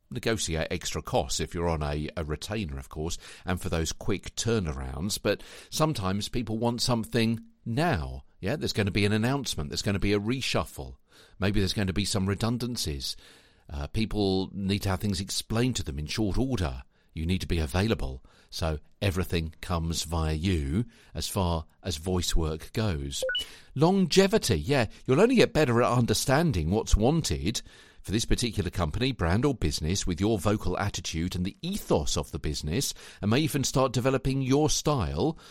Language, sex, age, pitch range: English, male, 50-69, 85-125 Hz